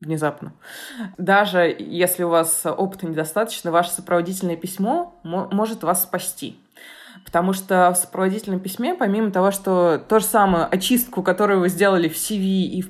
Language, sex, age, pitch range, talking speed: Russian, female, 20-39, 170-205 Hz, 155 wpm